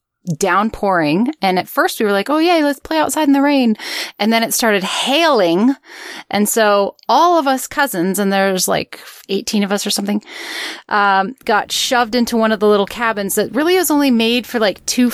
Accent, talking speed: American, 200 wpm